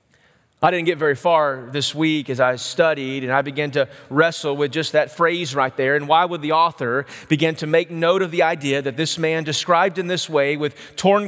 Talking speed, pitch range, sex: 225 wpm, 135-170 Hz, male